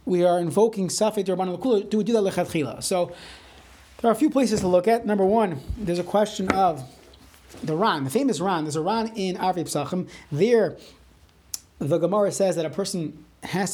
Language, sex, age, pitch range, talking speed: English, male, 30-49, 160-215 Hz, 180 wpm